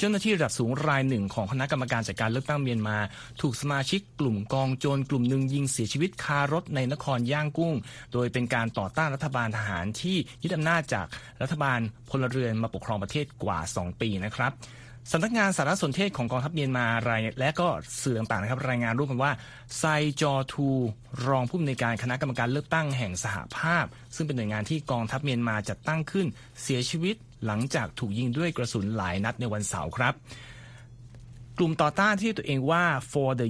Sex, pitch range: male, 110-145 Hz